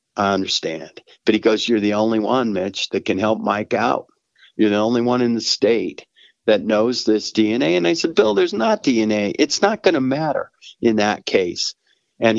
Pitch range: 95-115 Hz